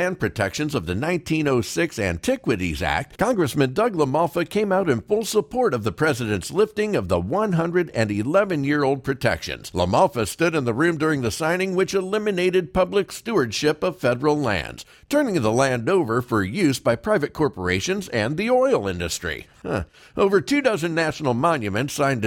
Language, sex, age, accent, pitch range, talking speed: English, male, 60-79, American, 110-180 Hz, 150 wpm